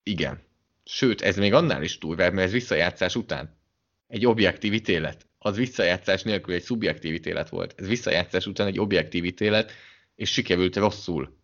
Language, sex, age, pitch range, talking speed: English, male, 20-39, 90-95 Hz, 145 wpm